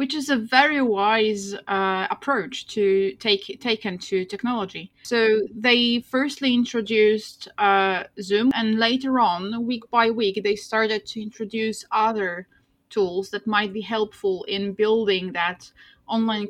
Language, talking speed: Polish, 140 wpm